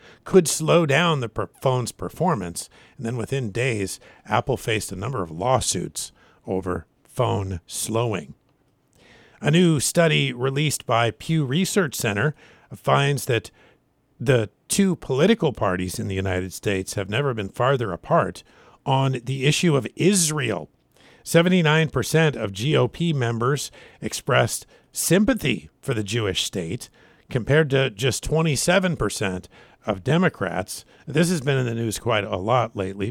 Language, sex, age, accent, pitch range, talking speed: English, male, 50-69, American, 100-145 Hz, 130 wpm